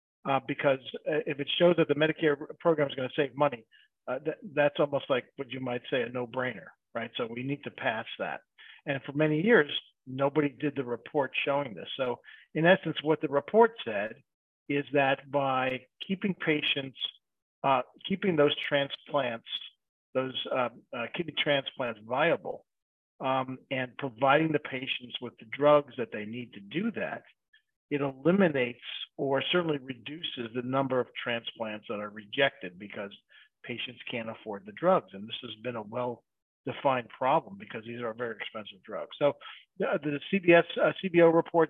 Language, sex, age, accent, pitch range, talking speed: English, male, 50-69, American, 125-155 Hz, 160 wpm